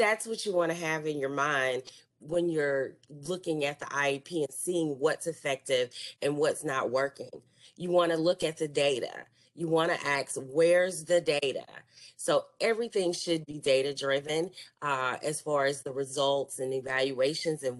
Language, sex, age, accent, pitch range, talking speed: English, female, 30-49, American, 140-175 Hz, 175 wpm